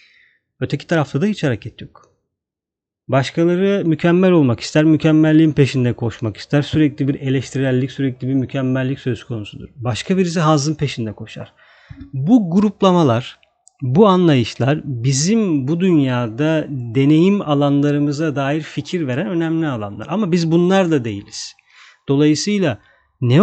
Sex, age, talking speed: male, 40-59, 125 wpm